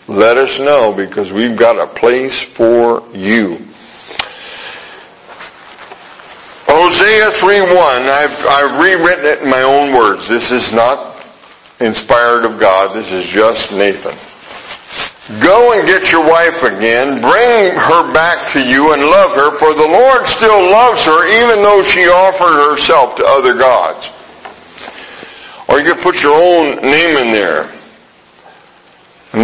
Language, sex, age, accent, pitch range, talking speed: English, male, 60-79, American, 115-180 Hz, 140 wpm